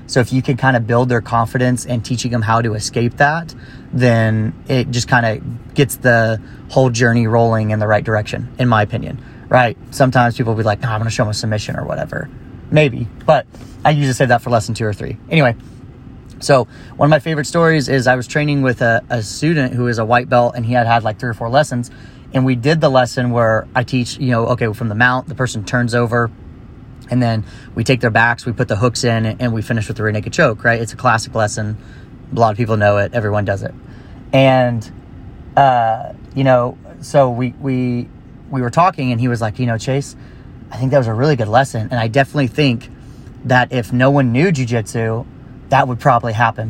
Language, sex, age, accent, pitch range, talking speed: English, male, 30-49, American, 115-130 Hz, 230 wpm